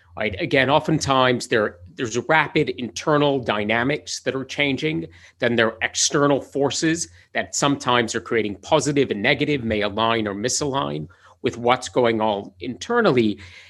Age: 40-59